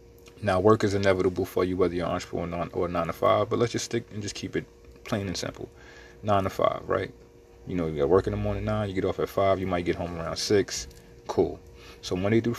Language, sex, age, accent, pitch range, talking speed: English, male, 30-49, American, 80-105 Hz, 260 wpm